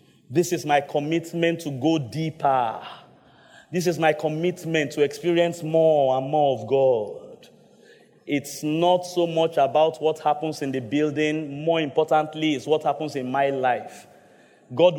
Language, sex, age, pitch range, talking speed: English, male, 30-49, 150-170 Hz, 150 wpm